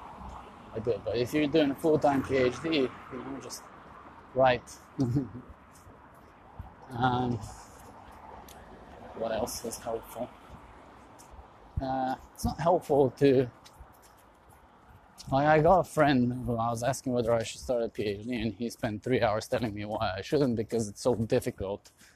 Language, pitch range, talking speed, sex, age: English, 105-135 Hz, 140 wpm, male, 20-39